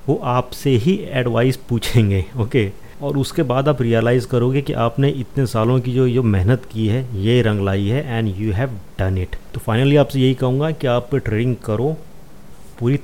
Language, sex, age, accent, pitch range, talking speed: Hindi, male, 30-49, native, 115-145 Hz, 195 wpm